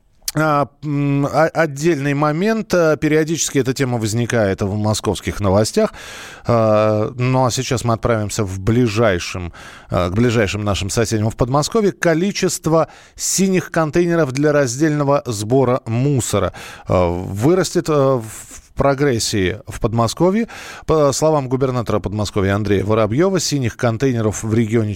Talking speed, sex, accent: 105 wpm, male, native